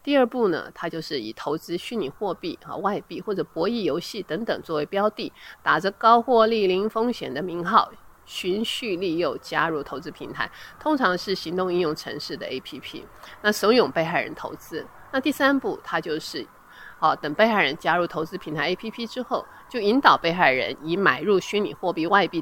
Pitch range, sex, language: 170-220 Hz, female, Chinese